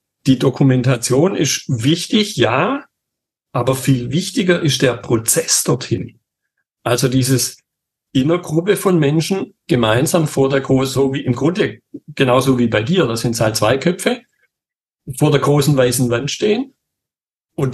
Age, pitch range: 60-79, 125-160 Hz